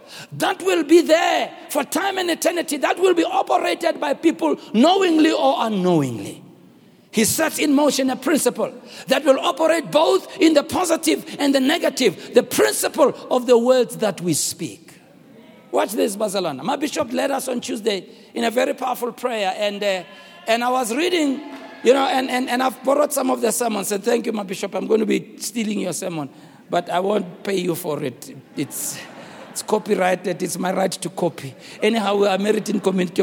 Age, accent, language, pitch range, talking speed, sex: 60-79, South African, English, 185-275 Hz, 190 wpm, male